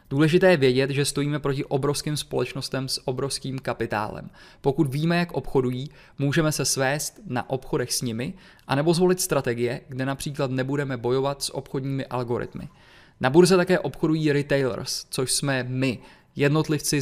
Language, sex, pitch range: Czech, male, 130-155 Hz